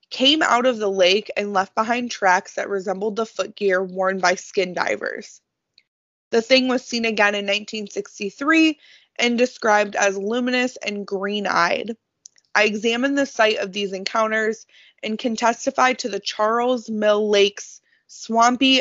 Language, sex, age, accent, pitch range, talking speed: English, female, 20-39, American, 200-250 Hz, 150 wpm